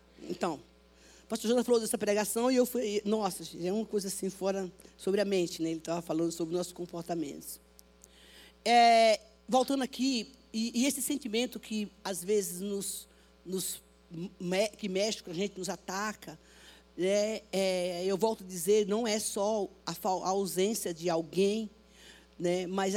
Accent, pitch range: Brazilian, 170-225 Hz